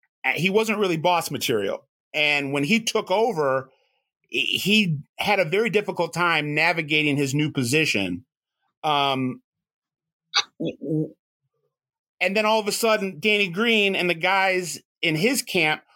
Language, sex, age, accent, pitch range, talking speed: English, male, 30-49, American, 145-200 Hz, 130 wpm